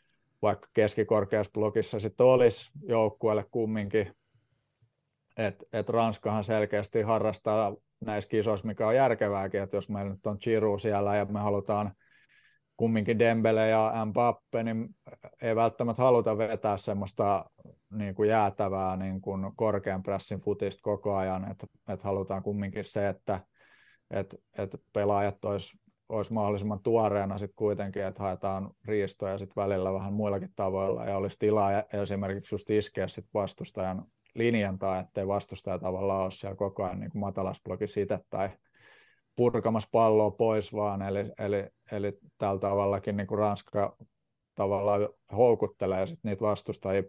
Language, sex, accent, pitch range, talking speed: Finnish, male, native, 100-110 Hz, 130 wpm